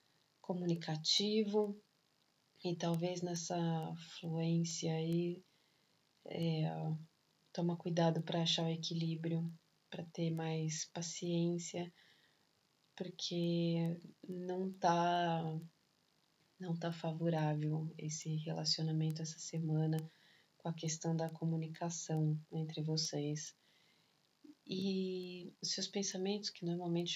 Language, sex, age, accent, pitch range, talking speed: Portuguese, female, 20-39, Brazilian, 160-190 Hz, 90 wpm